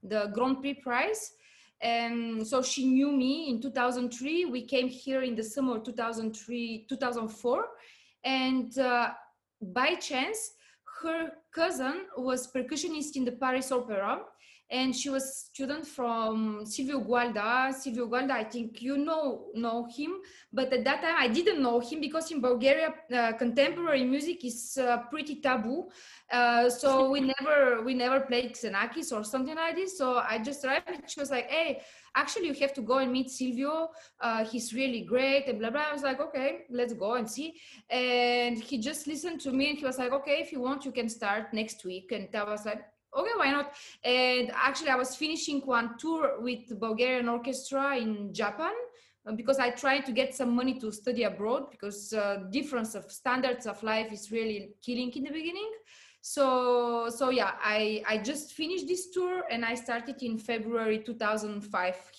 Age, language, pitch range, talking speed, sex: 20-39, English, 230-280 Hz, 180 wpm, female